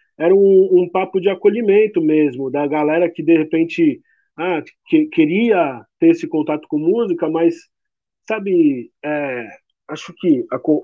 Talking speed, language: 145 wpm, Portuguese